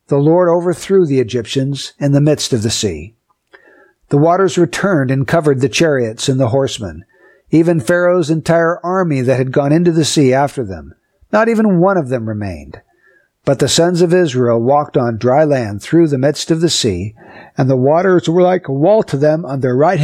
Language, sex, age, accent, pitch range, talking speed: English, male, 50-69, American, 125-170 Hz, 200 wpm